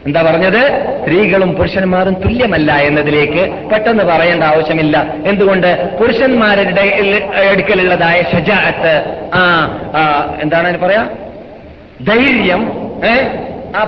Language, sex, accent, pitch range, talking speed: Malayalam, male, native, 175-230 Hz, 80 wpm